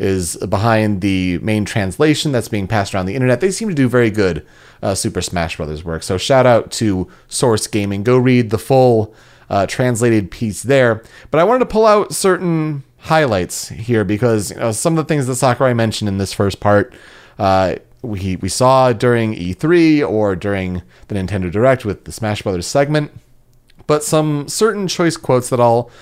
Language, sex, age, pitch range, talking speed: English, male, 30-49, 105-150 Hz, 190 wpm